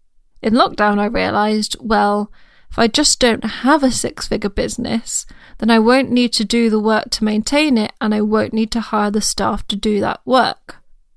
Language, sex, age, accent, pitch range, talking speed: English, female, 20-39, British, 215-245 Hz, 200 wpm